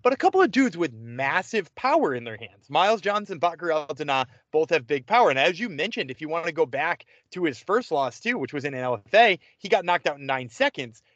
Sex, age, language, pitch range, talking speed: male, 20-39, English, 140-200 Hz, 240 wpm